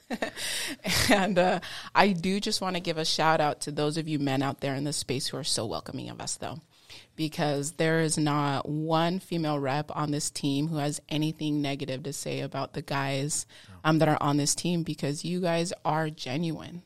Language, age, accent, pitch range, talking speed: English, 20-39, American, 145-160 Hz, 205 wpm